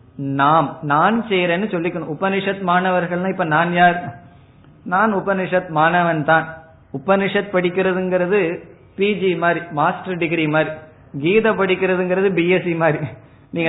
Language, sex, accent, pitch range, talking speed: Tamil, male, native, 135-180 Hz, 70 wpm